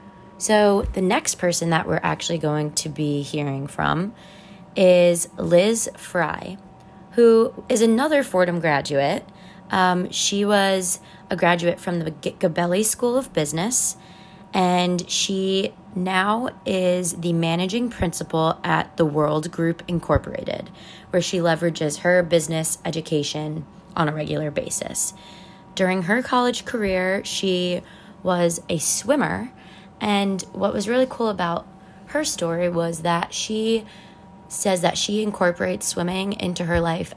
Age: 20-39